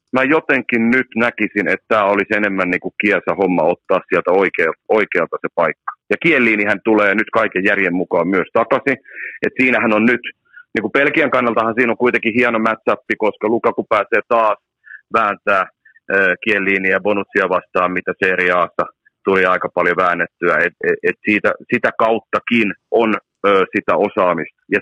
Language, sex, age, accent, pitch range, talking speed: Finnish, male, 40-59, native, 105-130 Hz, 155 wpm